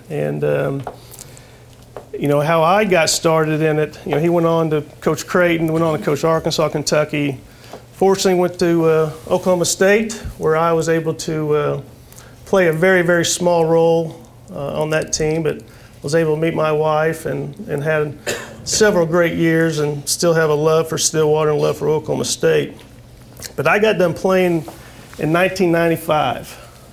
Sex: male